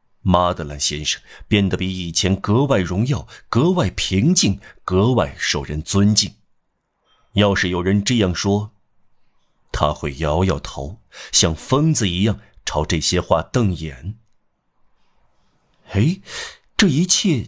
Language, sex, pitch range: Chinese, male, 90-110 Hz